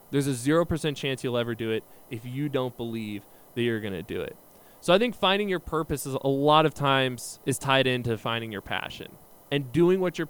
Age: 20-39